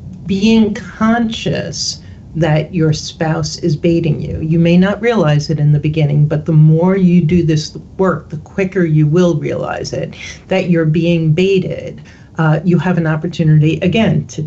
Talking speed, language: 165 wpm, English